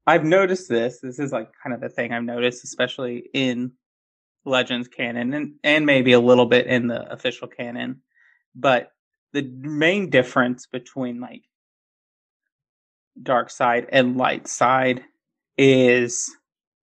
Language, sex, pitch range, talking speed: English, male, 125-155 Hz, 135 wpm